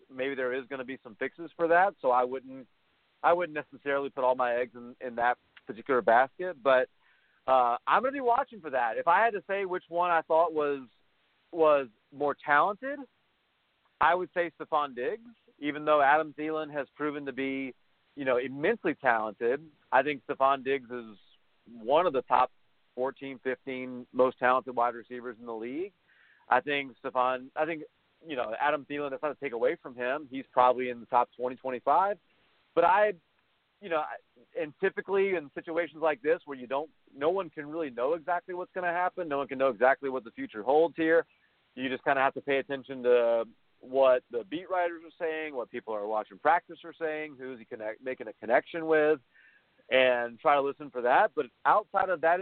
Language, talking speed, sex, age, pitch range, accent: English, 205 wpm, male, 40-59, 130-165 Hz, American